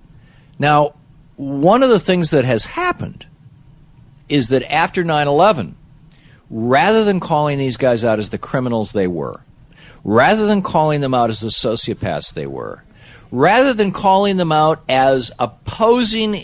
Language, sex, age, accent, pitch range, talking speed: English, male, 50-69, American, 135-180 Hz, 145 wpm